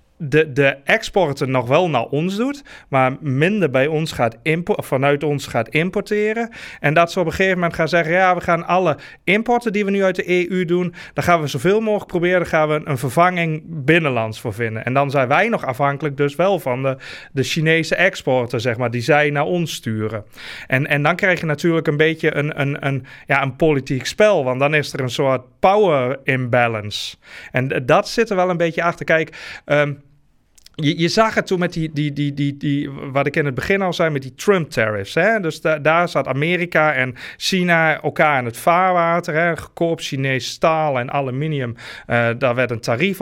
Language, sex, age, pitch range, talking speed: Dutch, male, 30-49, 130-170 Hz, 205 wpm